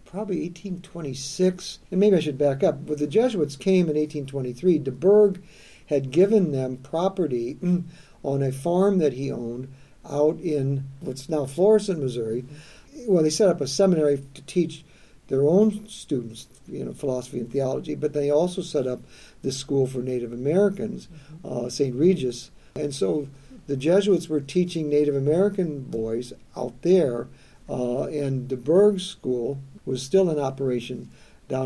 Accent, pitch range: American, 135-170 Hz